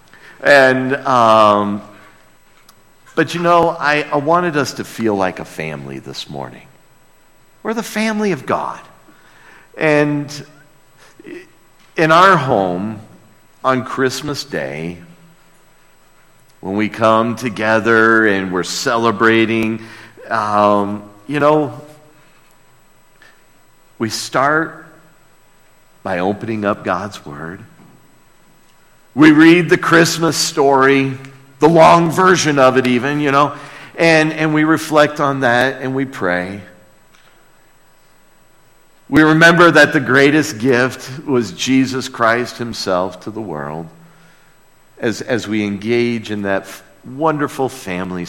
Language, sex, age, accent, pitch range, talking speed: English, male, 50-69, American, 105-150 Hz, 110 wpm